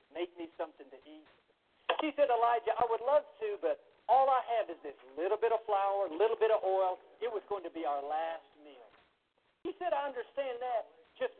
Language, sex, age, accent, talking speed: English, male, 50-69, American, 215 wpm